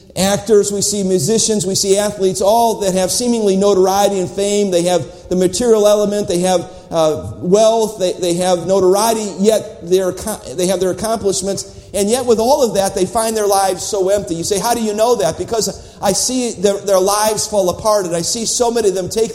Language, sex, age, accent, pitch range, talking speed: English, male, 50-69, American, 185-215 Hz, 210 wpm